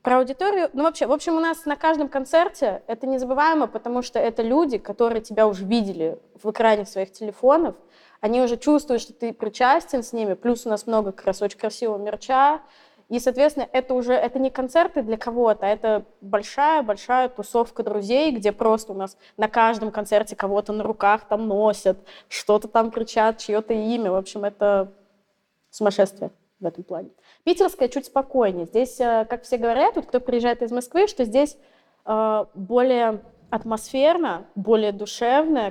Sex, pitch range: female, 205-255 Hz